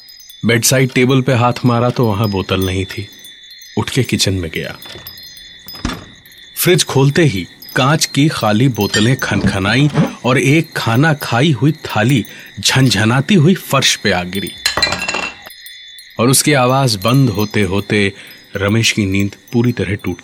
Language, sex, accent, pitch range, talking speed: Hindi, male, native, 110-155 Hz, 140 wpm